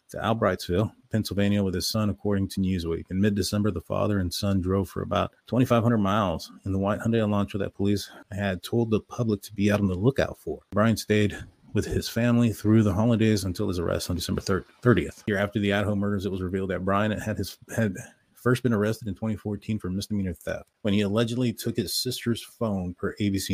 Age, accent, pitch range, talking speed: 30-49, American, 95-110 Hz, 210 wpm